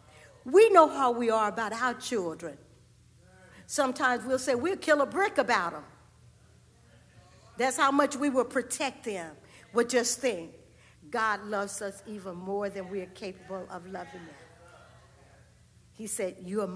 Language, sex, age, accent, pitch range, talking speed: English, female, 60-79, American, 195-260 Hz, 150 wpm